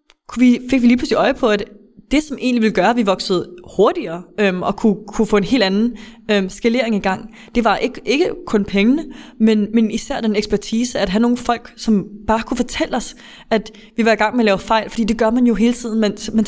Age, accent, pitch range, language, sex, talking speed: 20-39, Danish, 205-240 Hz, English, female, 240 wpm